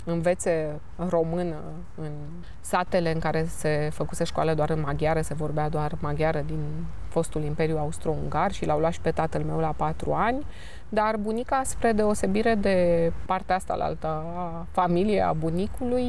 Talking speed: 160 wpm